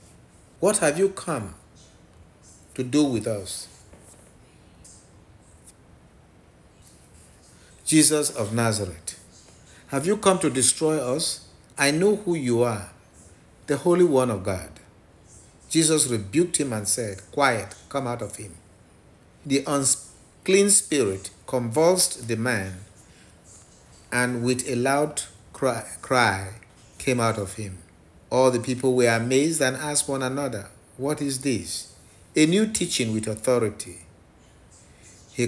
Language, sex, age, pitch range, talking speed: English, male, 50-69, 95-135 Hz, 120 wpm